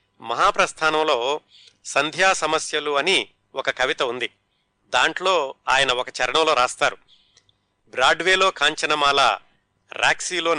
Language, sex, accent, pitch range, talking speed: Telugu, male, native, 145-185 Hz, 85 wpm